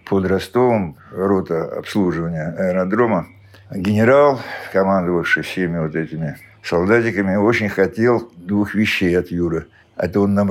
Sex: male